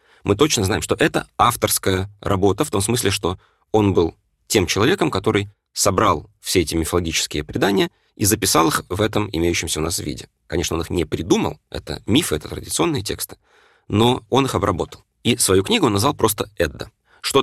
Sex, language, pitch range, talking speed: male, Russian, 85-105 Hz, 180 wpm